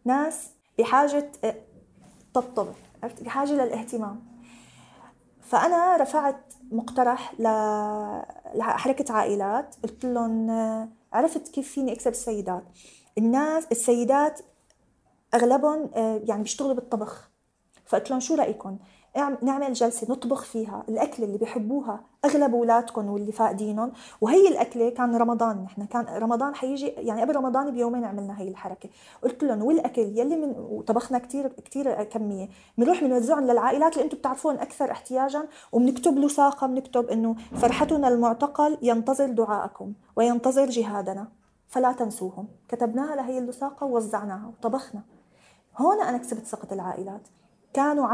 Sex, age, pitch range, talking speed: female, 20-39, 225-275 Hz, 115 wpm